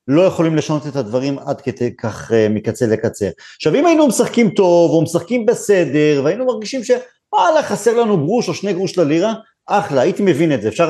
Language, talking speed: Hebrew, 185 wpm